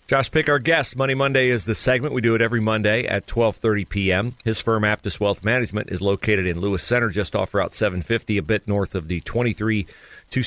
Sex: male